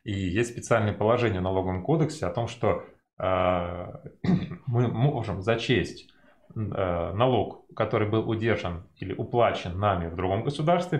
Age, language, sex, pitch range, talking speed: 20-39, Turkish, male, 105-140 Hz, 140 wpm